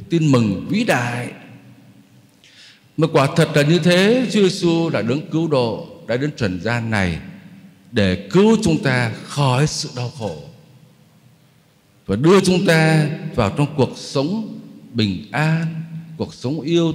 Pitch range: 125-185 Hz